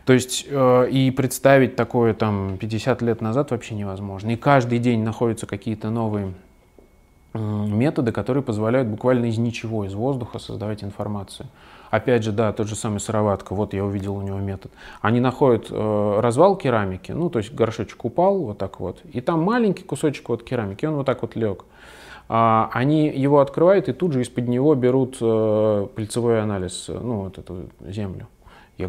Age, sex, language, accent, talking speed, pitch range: 20-39, male, Russian, native, 165 wpm, 105-130 Hz